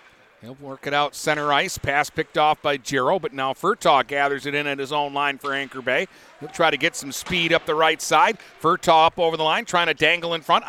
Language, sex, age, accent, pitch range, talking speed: English, male, 50-69, American, 140-170 Hz, 245 wpm